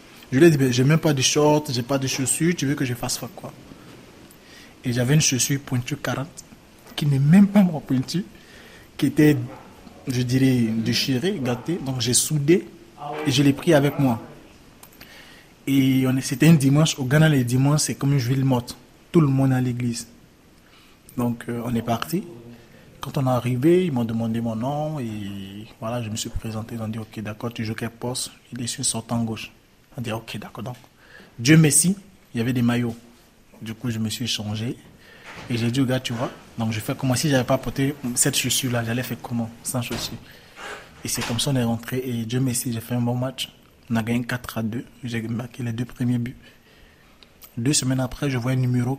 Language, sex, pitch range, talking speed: French, male, 120-135 Hz, 220 wpm